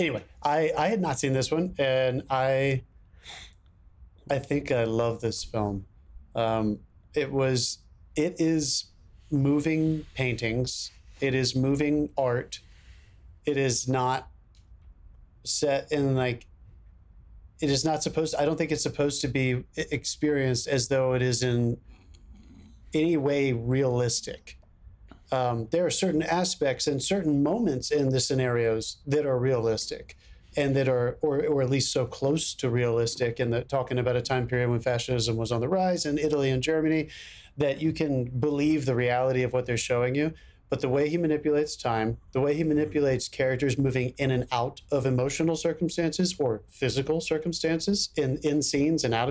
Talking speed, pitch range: 160 wpm, 120-150 Hz